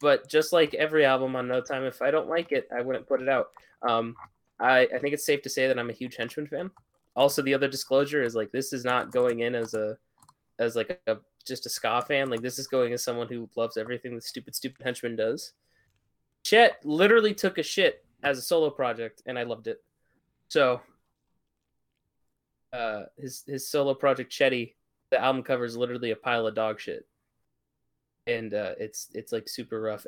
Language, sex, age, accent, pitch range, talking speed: English, male, 20-39, American, 115-150 Hz, 205 wpm